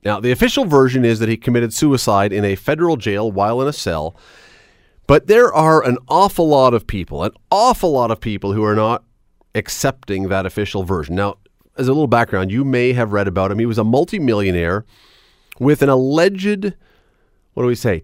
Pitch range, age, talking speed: 100-130 Hz, 30-49, 195 wpm